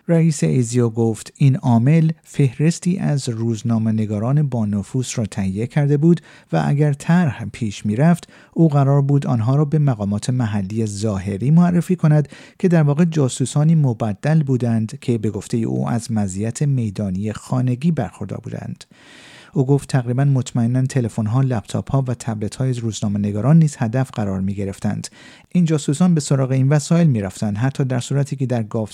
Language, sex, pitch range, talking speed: Persian, male, 110-150 Hz, 150 wpm